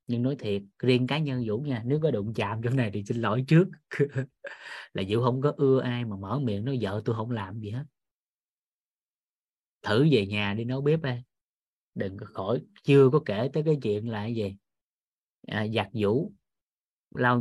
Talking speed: 190 wpm